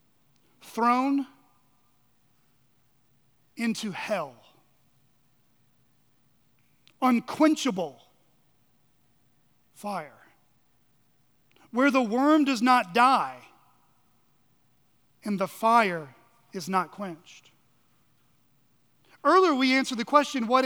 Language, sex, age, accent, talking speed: English, male, 40-59, American, 65 wpm